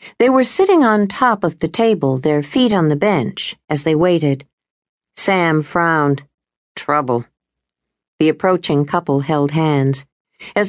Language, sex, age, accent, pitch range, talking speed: English, female, 50-69, American, 145-210 Hz, 140 wpm